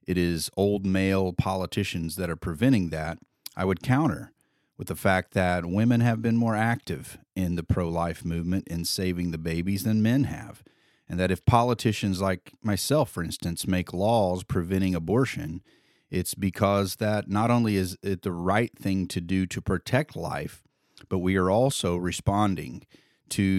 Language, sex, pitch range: English, male, 90-115 Hz